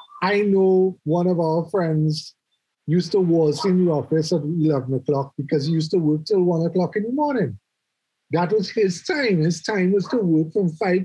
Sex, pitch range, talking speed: male, 155-210 Hz, 200 wpm